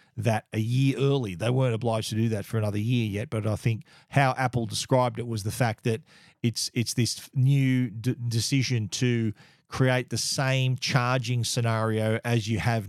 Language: English